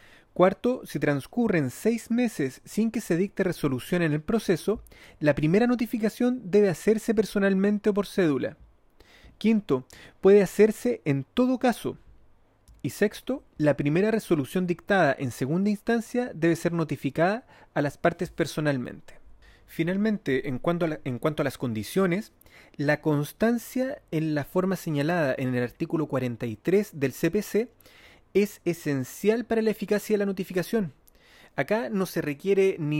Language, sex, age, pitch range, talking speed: Spanish, male, 30-49, 145-200 Hz, 140 wpm